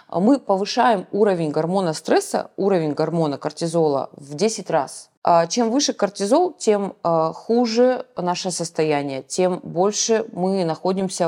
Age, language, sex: 20-39, Russian, female